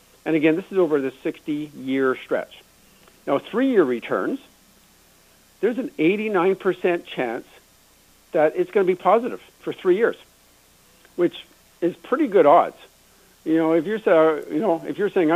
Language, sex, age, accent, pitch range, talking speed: English, male, 60-79, American, 140-200 Hz, 145 wpm